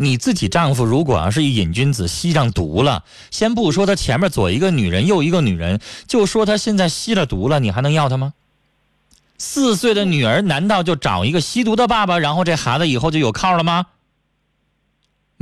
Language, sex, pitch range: Chinese, male, 115-190 Hz